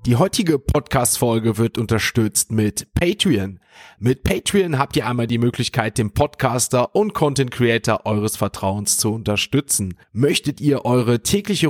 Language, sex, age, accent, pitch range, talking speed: German, male, 30-49, German, 110-135 Hz, 135 wpm